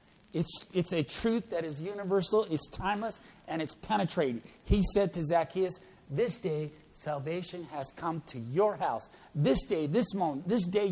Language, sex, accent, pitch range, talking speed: English, male, American, 140-185 Hz, 165 wpm